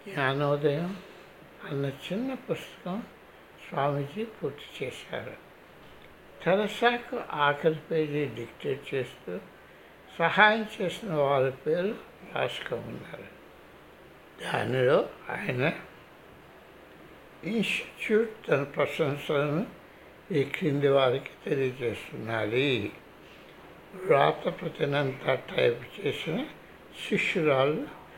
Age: 60-79